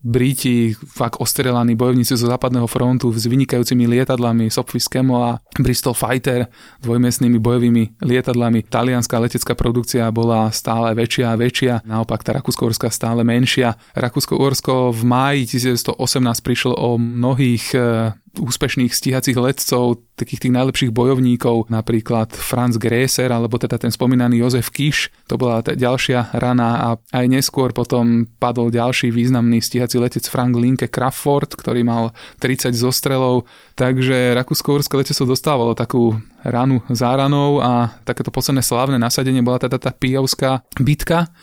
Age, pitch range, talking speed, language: 20-39, 120-130 Hz, 125 wpm, Slovak